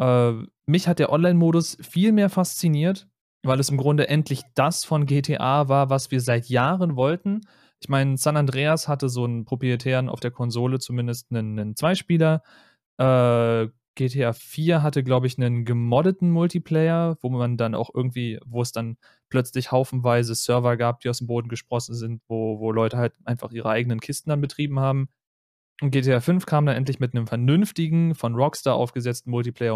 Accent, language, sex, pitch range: German, German, male, 120-145 Hz